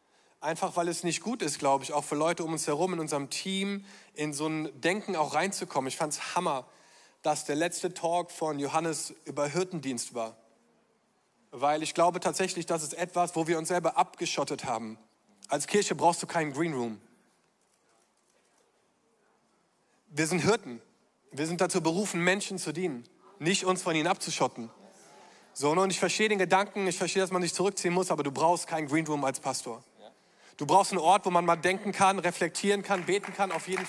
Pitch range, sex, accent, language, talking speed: 155-190 Hz, male, German, German, 190 wpm